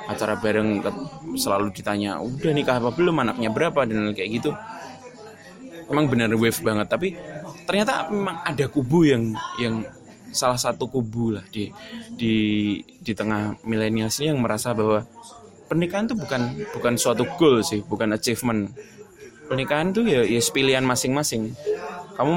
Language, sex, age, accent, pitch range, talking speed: Indonesian, male, 20-39, native, 110-145 Hz, 140 wpm